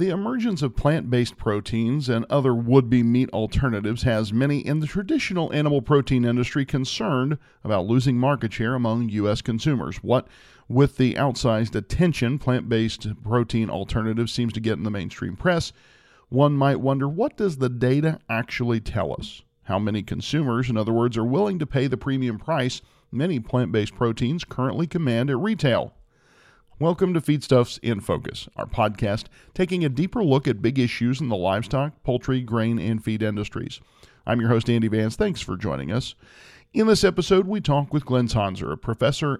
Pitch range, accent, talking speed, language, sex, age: 115-140 Hz, American, 170 wpm, English, male, 40-59